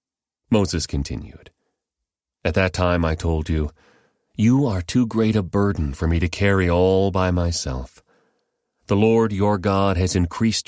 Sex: male